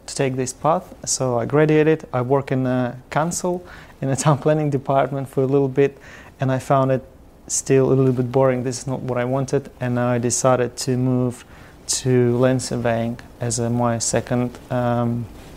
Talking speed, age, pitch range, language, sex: 190 wpm, 30-49, 130-140 Hz, English, male